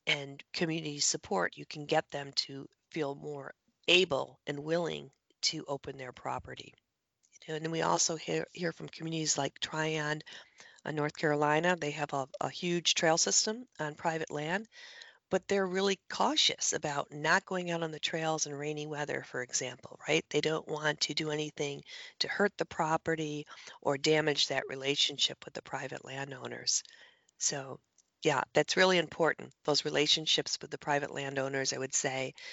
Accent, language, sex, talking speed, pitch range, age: American, English, female, 160 wpm, 145-170 Hz, 40-59